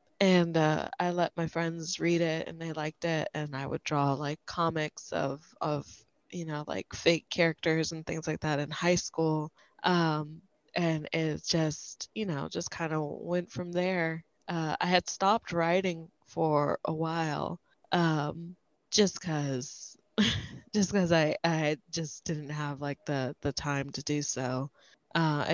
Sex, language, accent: female, English, American